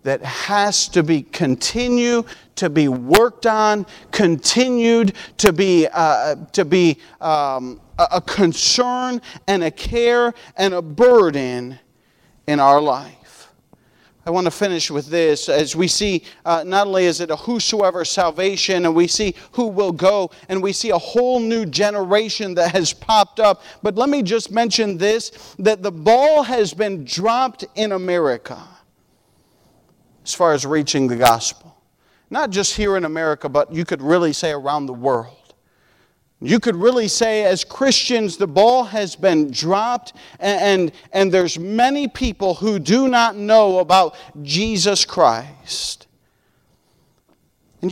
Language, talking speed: English, 150 wpm